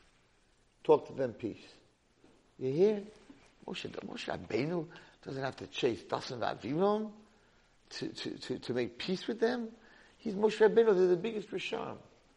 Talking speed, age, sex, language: 130 wpm, 50-69, male, English